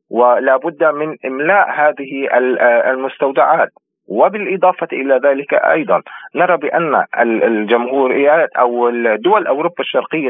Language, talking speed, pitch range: Arabic, 100 wpm, 125-165 Hz